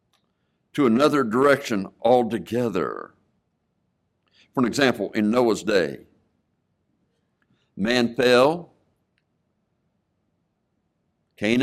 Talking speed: 65 wpm